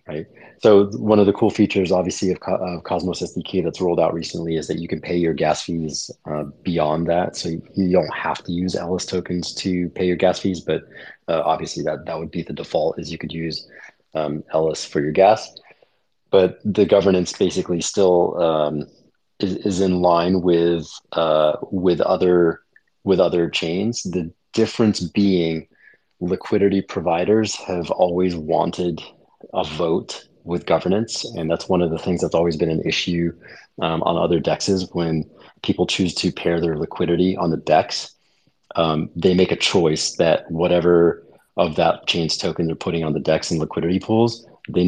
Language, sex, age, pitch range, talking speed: English, male, 30-49, 80-95 Hz, 180 wpm